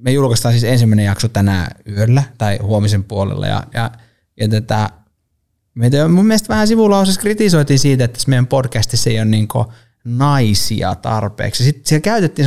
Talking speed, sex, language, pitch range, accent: 150 wpm, male, Finnish, 110-130 Hz, native